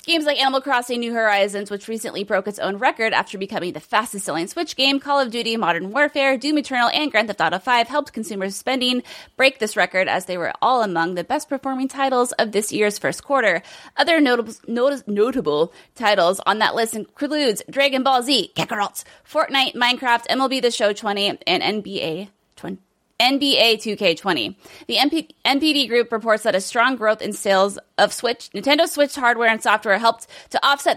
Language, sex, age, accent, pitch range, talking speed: English, female, 20-39, American, 210-280 Hz, 180 wpm